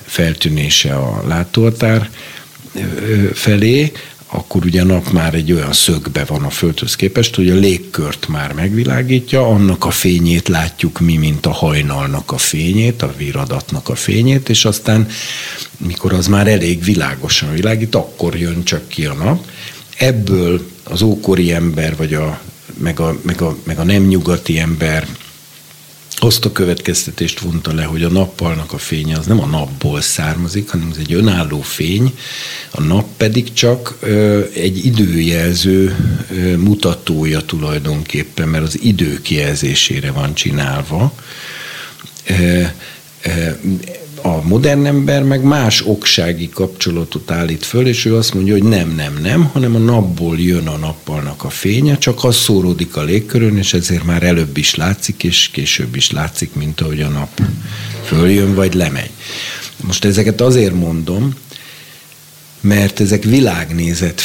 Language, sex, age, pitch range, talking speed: Hungarian, male, 60-79, 80-110 Hz, 140 wpm